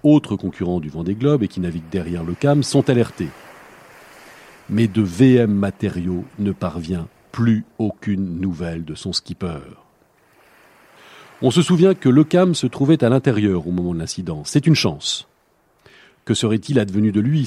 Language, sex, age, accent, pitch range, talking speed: French, male, 40-59, French, 90-130 Hz, 165 wpm